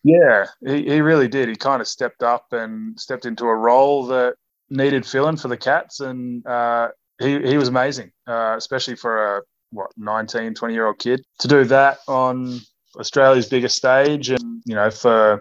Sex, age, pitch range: male, 20-39, 115-140 Hz